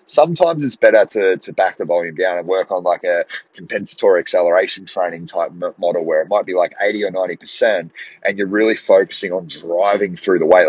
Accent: Australian